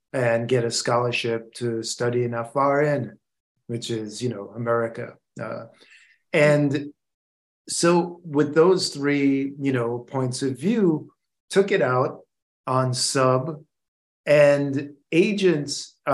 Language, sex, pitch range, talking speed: English, male, 120-145 Hz, 115 wpm